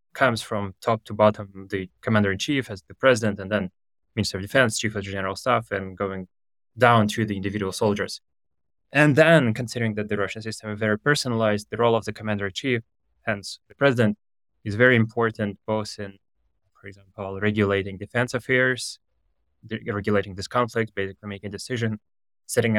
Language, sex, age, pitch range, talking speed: English, male, 20-39, 100-115 Hz, 170 wpm